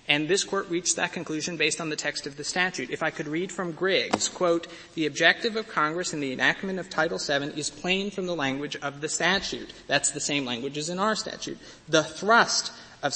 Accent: American